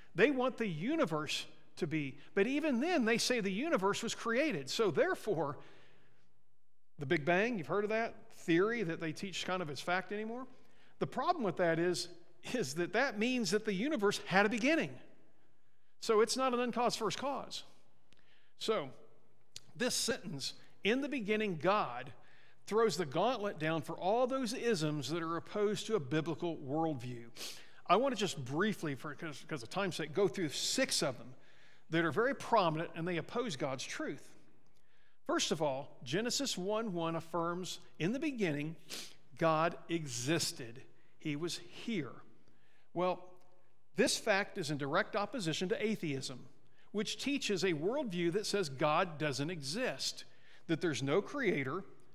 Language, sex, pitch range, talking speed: English, male, 160-215 Hz, 160 wpm